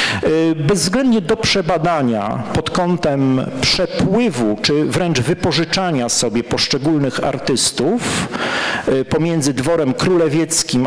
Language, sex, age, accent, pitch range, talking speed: Polish, male, 50-69, native, 120-160 Hz, 85 wpm